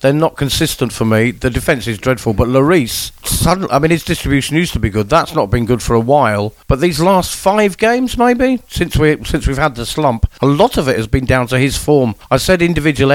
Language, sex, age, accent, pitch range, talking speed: English, male, 50-69, British, 120-145 Hz, 245 wpm